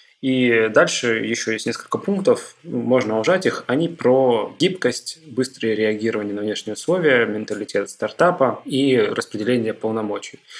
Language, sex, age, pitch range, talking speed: Russian, male, 20-39, 110-135 Hz, 125 wpm